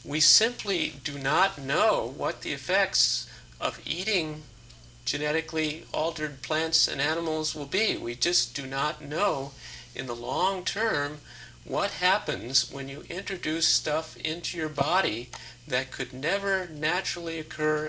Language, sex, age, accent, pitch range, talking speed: English, male, 50-69, American, 120-155 Hz, 135 wpm